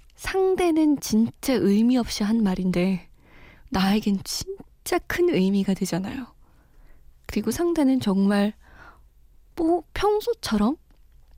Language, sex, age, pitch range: Korean, female, 20-39, 195-265 Hz